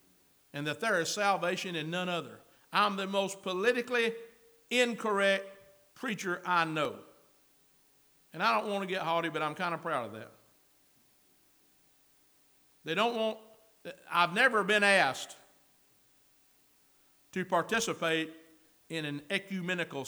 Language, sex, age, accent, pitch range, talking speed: English, male, 60-79, American, 155-215 Hz, 125 wpm